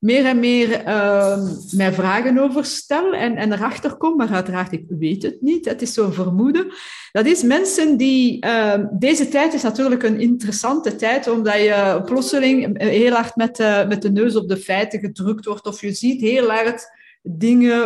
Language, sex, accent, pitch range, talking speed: Dutch, female, Dutch, 200-265 Hz, 185 wpm